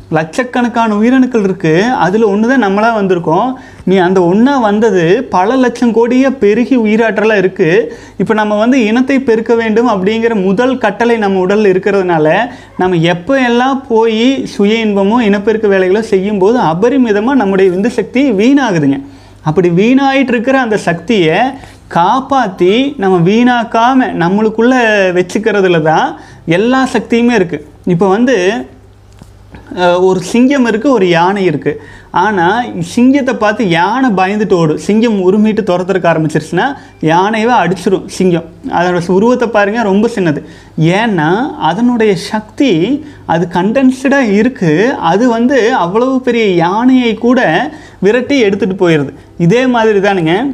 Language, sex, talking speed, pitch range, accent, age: Tamil, male, 120 wpm, 185-240 Hz, native, 30-49